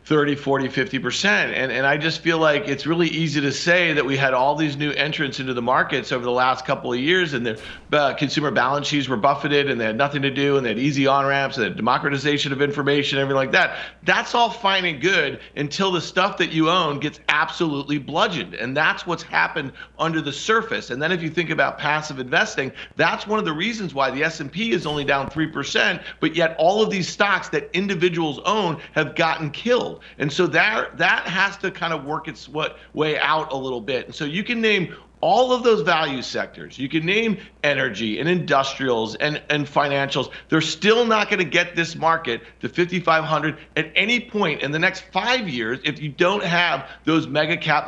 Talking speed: 210 wpm